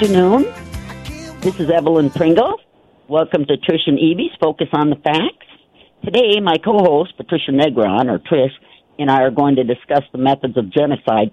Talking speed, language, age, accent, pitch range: 170 wpm, English, 50-69, American, 110-150 Hz